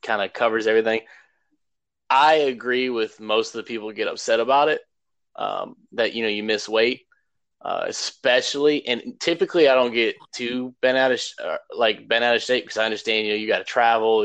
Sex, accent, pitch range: male, American, 110-150 Hz